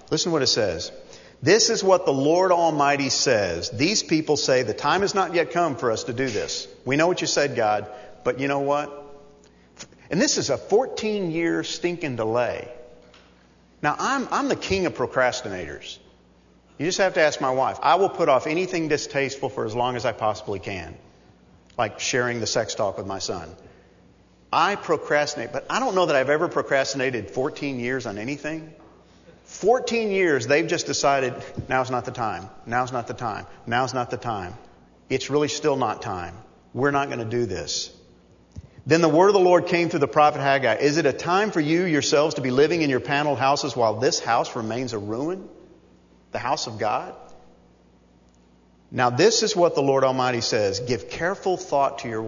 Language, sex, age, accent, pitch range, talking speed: English, male, 50-69, American, 105-155 Hz, 195 wpm